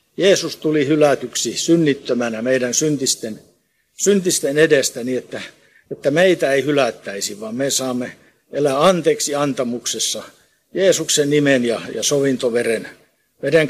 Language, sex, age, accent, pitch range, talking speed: Finnish, male, 60-79, native, 130-165 Hz, 115 wpm